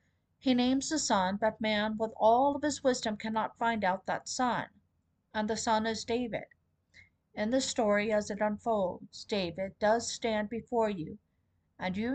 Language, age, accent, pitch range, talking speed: English, 50-69, American, 195-235 Hz, 170 wpm